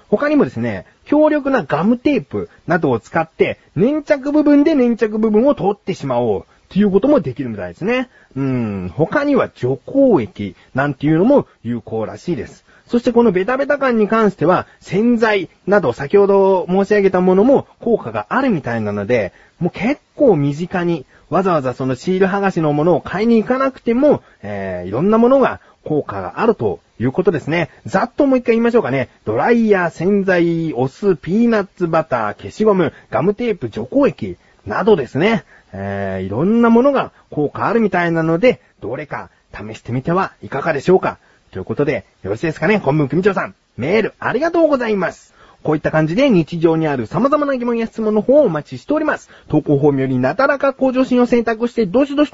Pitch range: 145-235 Hz